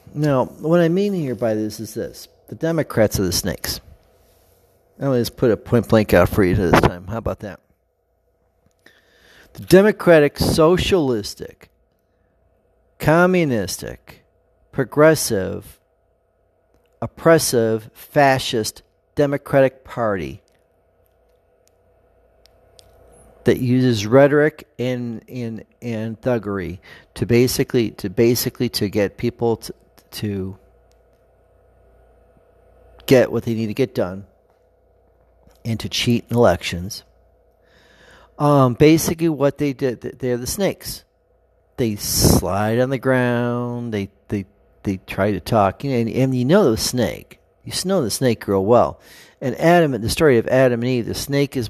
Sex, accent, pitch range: male, American, 100-130 Hz